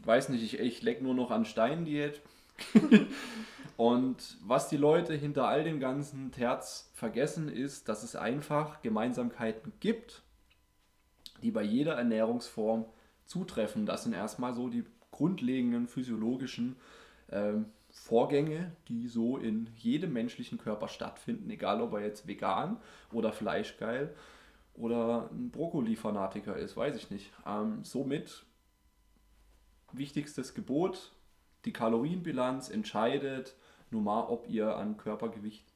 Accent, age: German, 20-39